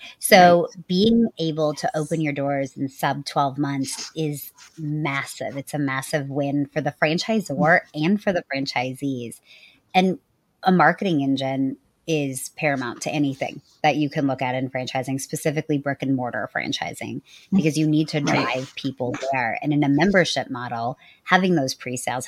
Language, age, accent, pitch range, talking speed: English, 30-49, American, 130-155 Hz, 150 wpm